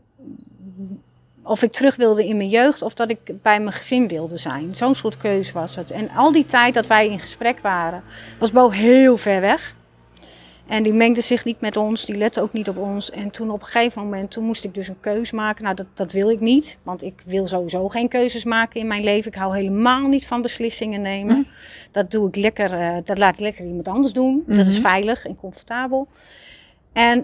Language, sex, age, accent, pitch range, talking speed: Dutch, female, 30-49, Dutch, 195-230 Hz, 220 wpm